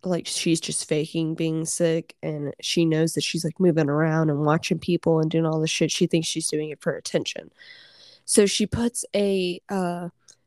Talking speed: 195 wpm